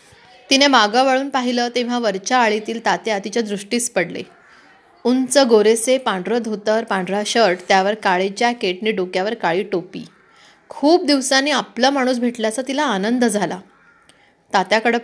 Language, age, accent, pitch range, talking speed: Marathi, 30-49, native, 210-260 Hz, 130 wpm